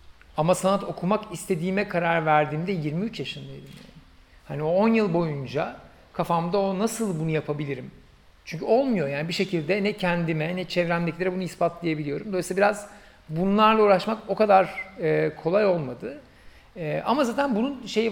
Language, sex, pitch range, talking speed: Turkish, male, 145-190 Hz, 145 wpm